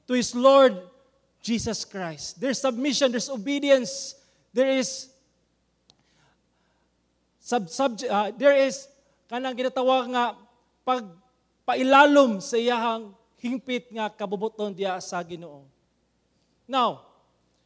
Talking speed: 55 wpm